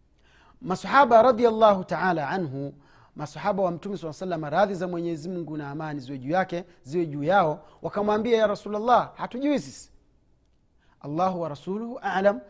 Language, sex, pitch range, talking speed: Swahili, male, 170-220 Hz, 135 wpm